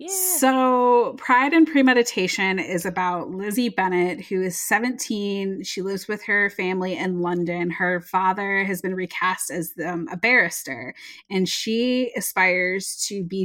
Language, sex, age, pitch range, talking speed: English, female, 20-39, 175-225 Hz, 145 wpm